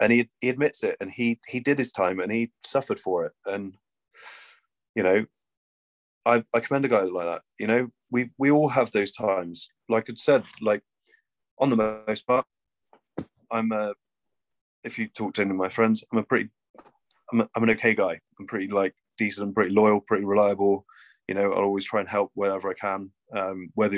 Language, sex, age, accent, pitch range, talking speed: English, male, 20-39, British, 100-120 Hz, 205 wpm